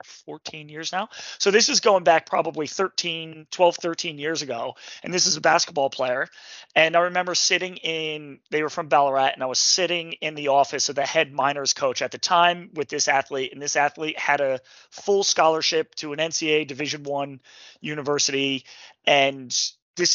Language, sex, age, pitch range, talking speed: English, male, 30-49, 140-175 Hz, 185 wpm